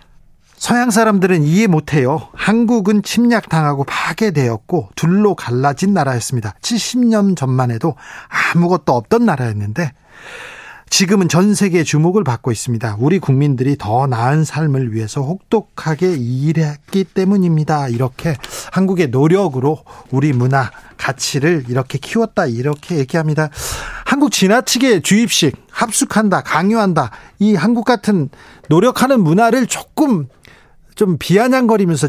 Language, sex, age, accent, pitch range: Korean, male, 40-59, native, 140-200 Hz